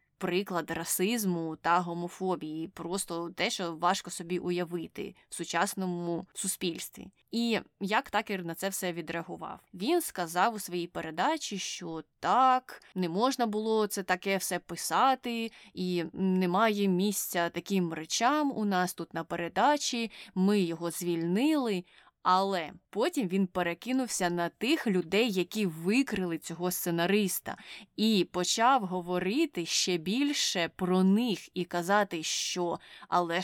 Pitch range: 175-215 Hz